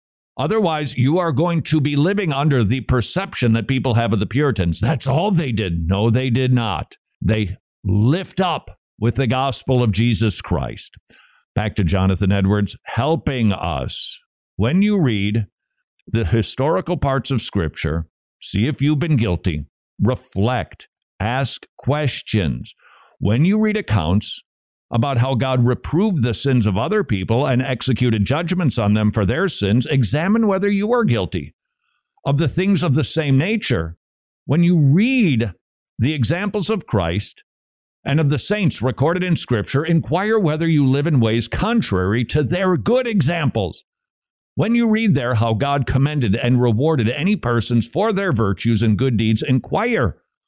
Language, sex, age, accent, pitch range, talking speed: English, male, 50-69, American, 110-160 Hz, 155 wpm